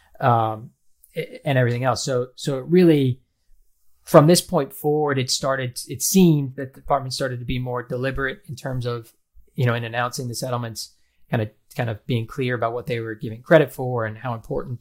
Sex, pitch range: male, 120-140 Hz